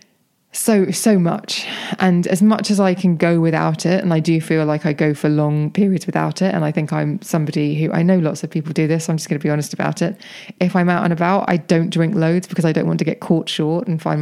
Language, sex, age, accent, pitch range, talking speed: English, female, 20-39, British, 155-195 Hz, 270 wpm